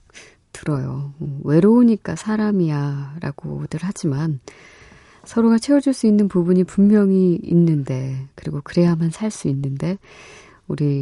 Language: Korean